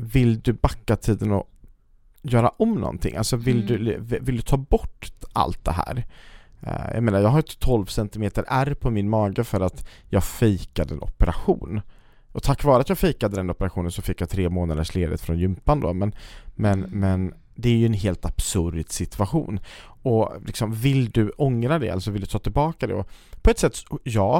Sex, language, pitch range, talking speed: male, Swedish, 95-125 Hz, 195 wpm